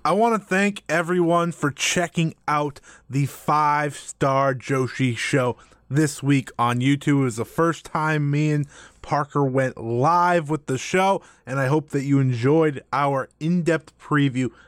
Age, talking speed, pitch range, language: 20-39, 155 wpm, 135-170 Hz, English